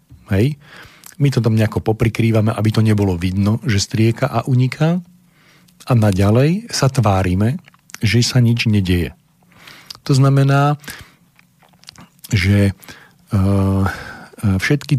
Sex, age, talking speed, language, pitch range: male, 40-59, 105 wpm, Slovak, 105-140 Hz